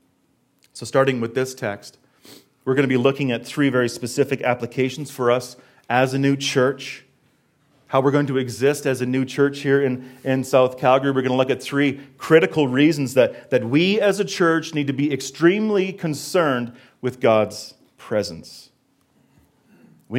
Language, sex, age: English, male, 40-59